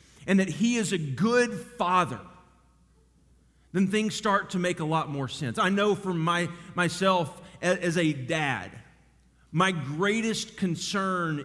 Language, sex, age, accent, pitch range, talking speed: English, male, 40-59, American, 150-205 Hz, 135 wpm